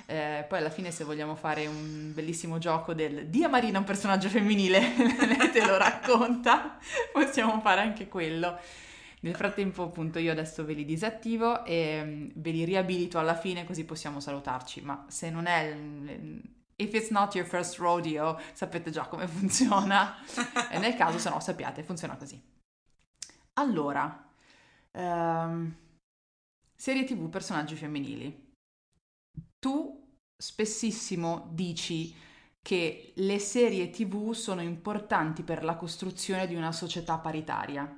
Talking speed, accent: 130 wpm, native